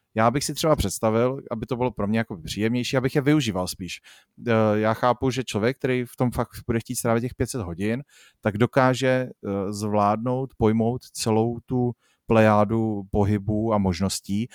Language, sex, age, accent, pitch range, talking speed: Czech, male, 30-49, native, 105-130 Hz, 165 wpm